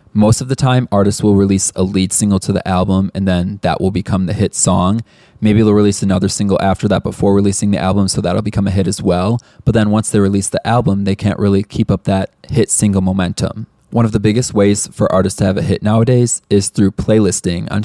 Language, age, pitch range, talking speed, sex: English, 20-39, 95-110 Hz, 240 wpm, male